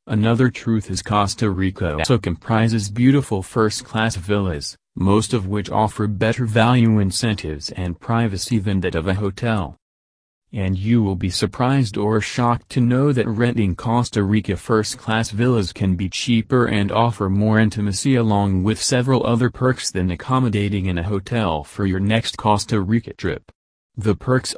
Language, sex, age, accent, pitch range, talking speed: English, male, 30-49, American, 95-115 Hz, 155 wpm